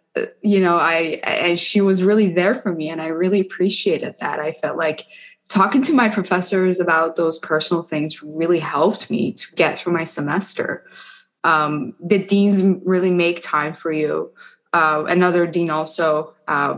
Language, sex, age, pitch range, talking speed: English, female, 20-39, 165-210 Hz, 170 wpm